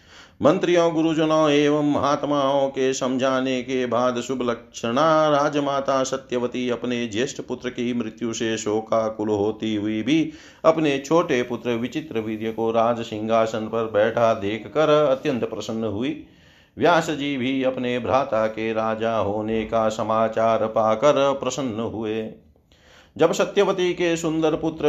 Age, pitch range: 40-59, 115-145 Hz